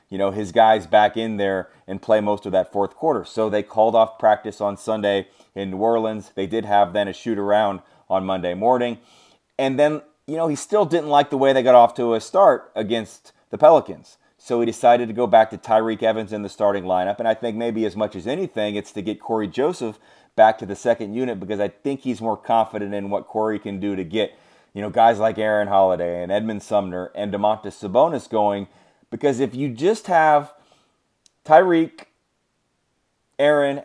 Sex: male